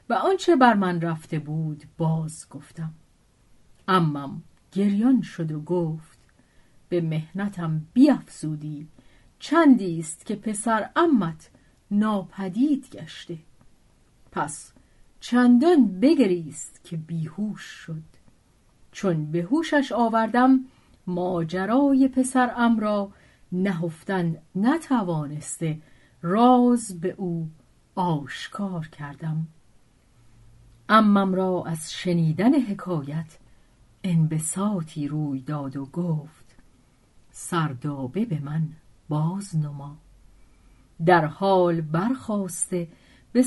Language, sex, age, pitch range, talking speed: Persian, female, 40-59, 155-210 Hz, 90 wpm